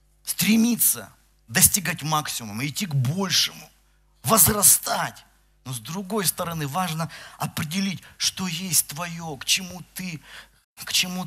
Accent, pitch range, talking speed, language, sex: native, 115-165 Hz, 110 wpm, Russian, male